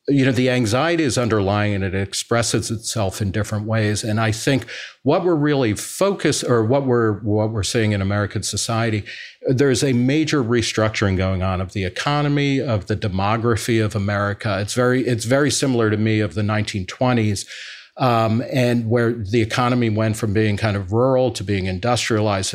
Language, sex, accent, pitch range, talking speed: English, male, American, 110-130 Hz, 180 wpm